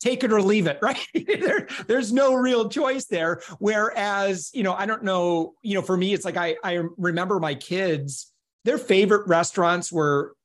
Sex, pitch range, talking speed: male, 165-220 Hz, 185 wpm